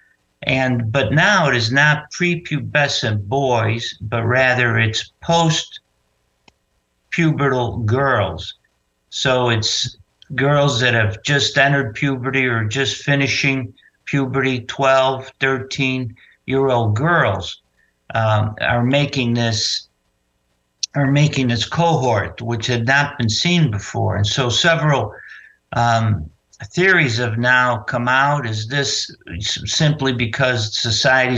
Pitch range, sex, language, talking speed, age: 110-140 Hz, male, English, 115 wpm, 60-79